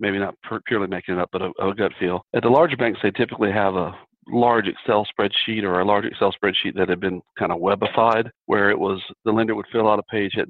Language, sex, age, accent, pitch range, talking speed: English, male, 40-59, American, 100-120 Hz, 250 wpm